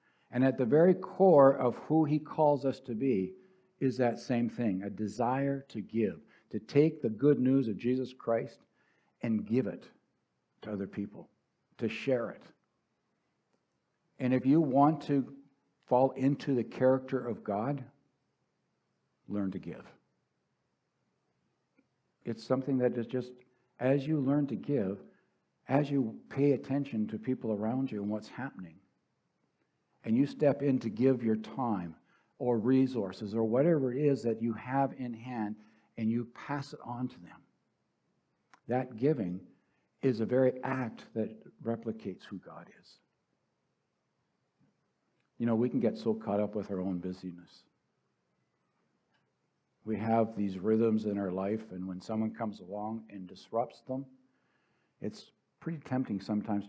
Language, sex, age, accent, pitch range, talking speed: English, male, 60-79, American, 110-135 Hz, 150 wpm